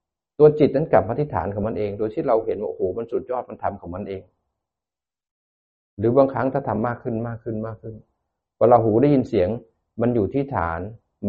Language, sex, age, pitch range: Thai, male, 60-79, 90-120 Hz